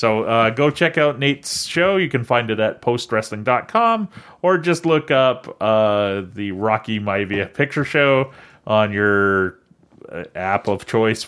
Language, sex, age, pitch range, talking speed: English, male, 30-49, 110-160 Hz, 150 wpm